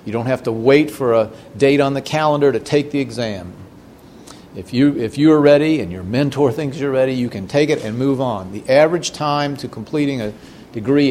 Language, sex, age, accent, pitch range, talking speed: English, male, 50-69, American, 110-140 Hz, 215 wpm